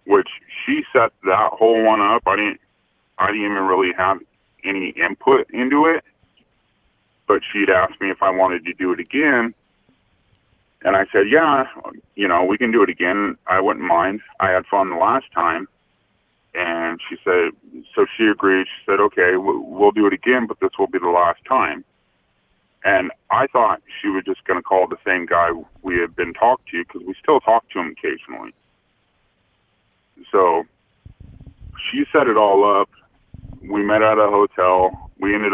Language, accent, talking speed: English, American, 180 wpm